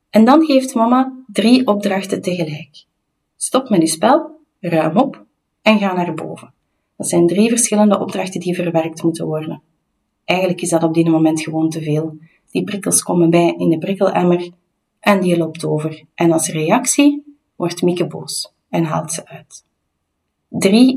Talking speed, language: 165 wpm, Dutch